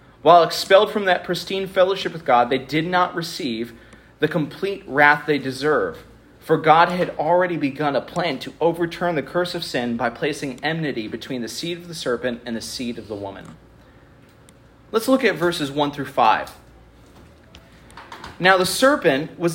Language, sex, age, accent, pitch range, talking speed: English, male, 30-49, American, 135-185 Hz, 170 wpm